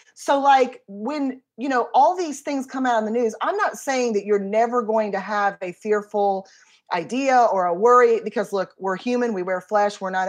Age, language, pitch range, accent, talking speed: 30-49, English, 200-260 Hz, American, 215 wpm